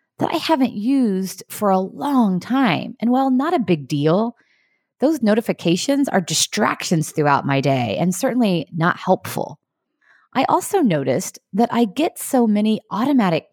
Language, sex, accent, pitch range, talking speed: English, female, American, 155-230 Hz, 145 wpm